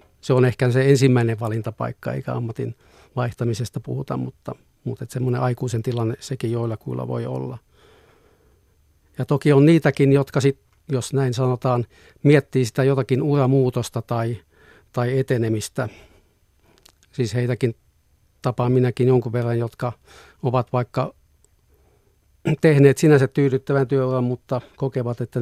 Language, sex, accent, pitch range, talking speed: Finnish, male, native, 115-130 Hz, 120 wpm